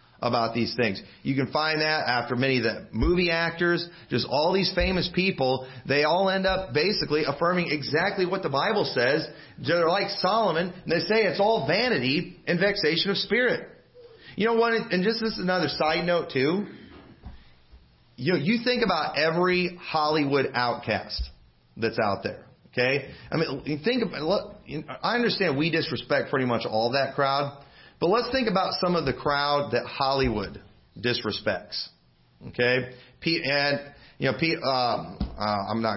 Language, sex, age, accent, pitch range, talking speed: English, male, 40-59, American, 125-175 Hz, 165 wpm